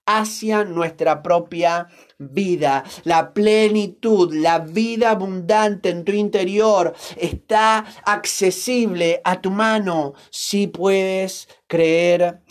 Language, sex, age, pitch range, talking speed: Spanish, male, 30-49, 180-225 Hz, 95 wpm